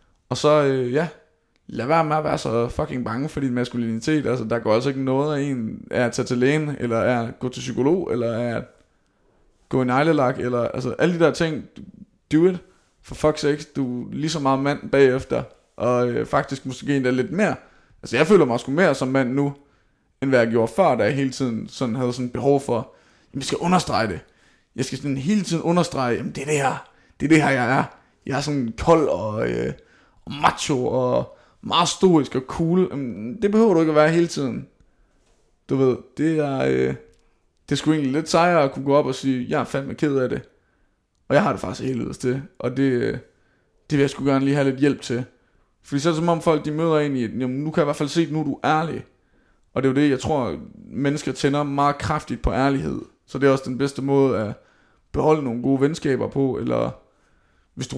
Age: 20-39